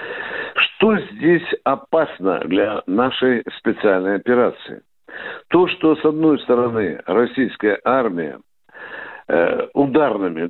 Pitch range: 135-195 Hz